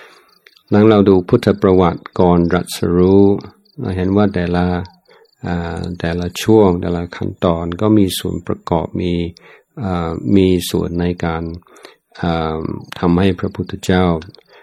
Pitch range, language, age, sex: 85-95 Hz, Thai, 60-79, male